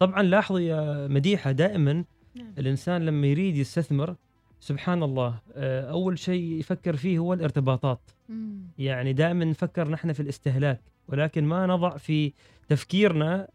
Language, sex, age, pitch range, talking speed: Arabic, male, 30-49, 140-180 Hz, 125 wpm